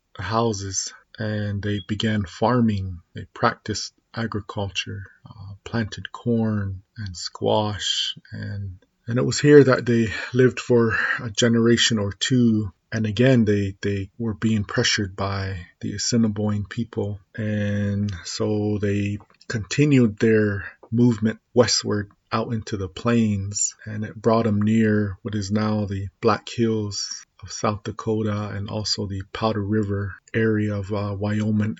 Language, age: English, 30-49